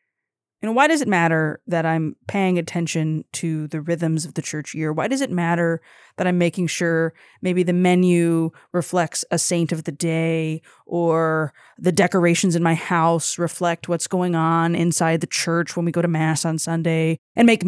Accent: American